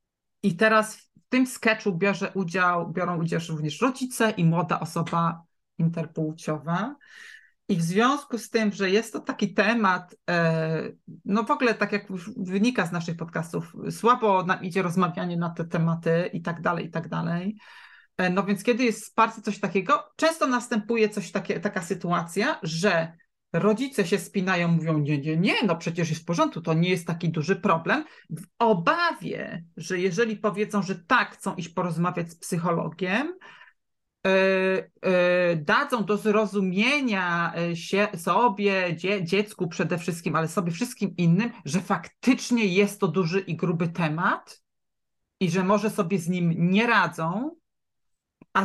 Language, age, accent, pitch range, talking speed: Polish, 30-49, native, 170-220 Hz, 150 wpm